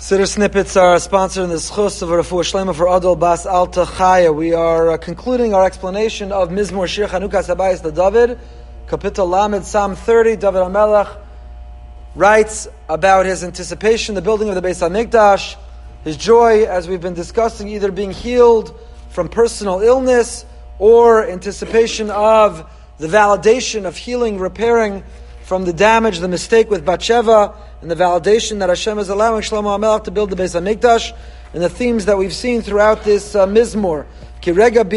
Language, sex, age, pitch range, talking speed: English, male, 30-49, 185-230 Hz, 160 wpm